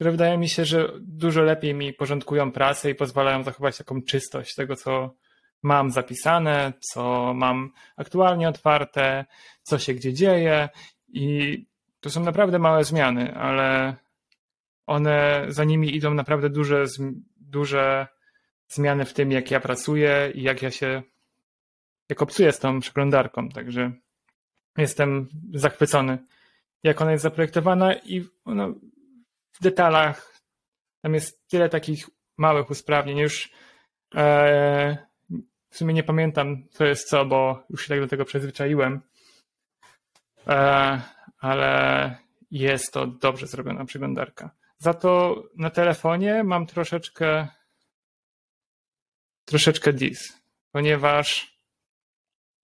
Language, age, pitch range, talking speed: Polish, 30-49, 135-160 Hz, 120 wpm